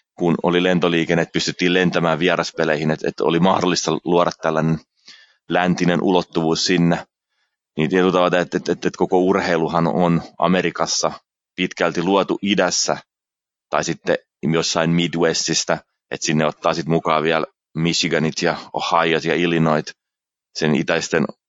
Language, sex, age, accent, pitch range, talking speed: Finnish, male, 30-49, native, 80-90 Hz, 125 wpm